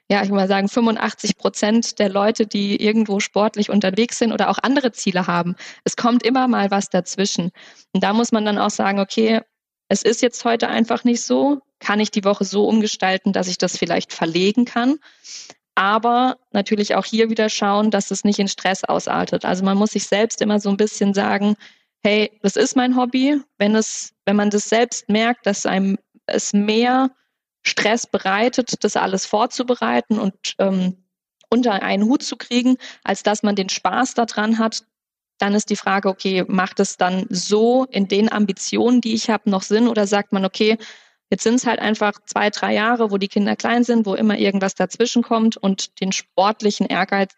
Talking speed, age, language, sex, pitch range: 190 wpm, 20-39, German, female, 195-225 Hz